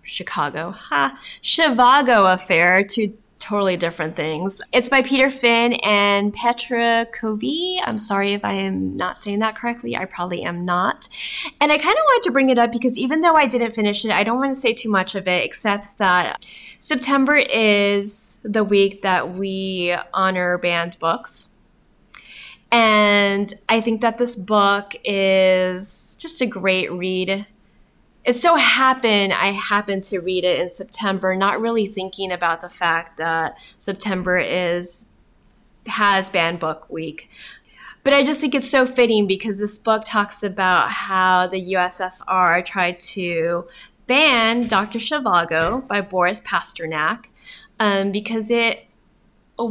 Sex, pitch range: female, 185-235 Hz